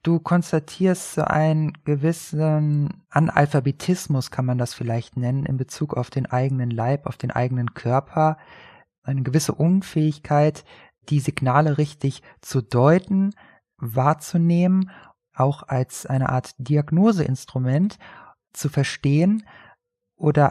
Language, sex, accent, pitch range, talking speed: German, male, German, 130-170 Hz, 110 wpm